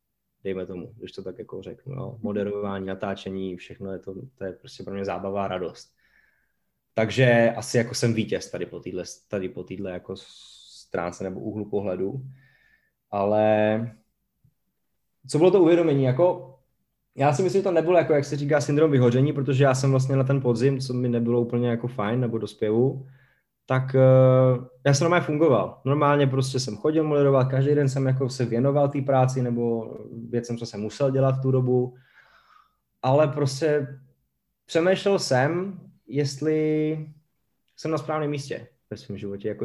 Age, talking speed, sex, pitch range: 20-39, 165 wpm, male, 115-135 Hz